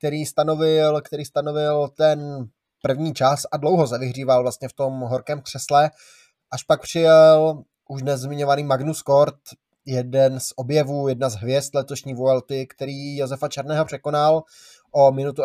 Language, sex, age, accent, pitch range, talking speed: Czech, male, 20-39, native, 135-150 Hz, 135 wpm